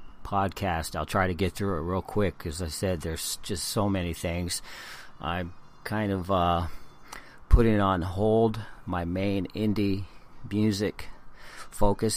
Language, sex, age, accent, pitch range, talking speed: English, male, 50-69, American, 85-110 Hz, 145 wpm